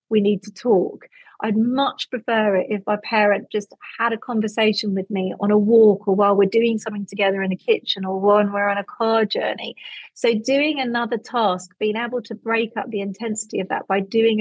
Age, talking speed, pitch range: 40-59, 210 wpm, 200-235 Hz